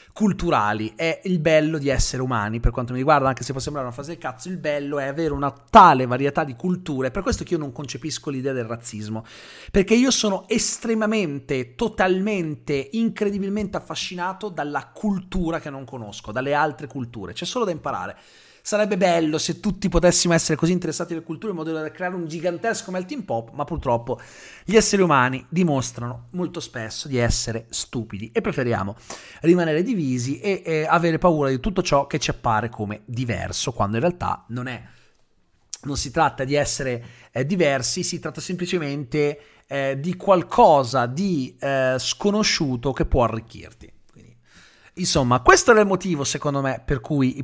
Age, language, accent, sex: 30-49, Italian, native, male